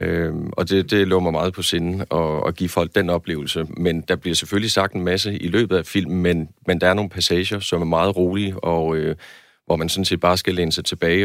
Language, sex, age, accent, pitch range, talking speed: Danish, male, 30-49, native, 85-95 Hz, 245 wpm